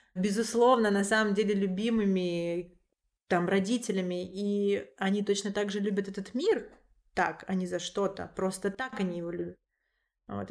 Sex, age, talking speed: female, 20-39, 150 wpm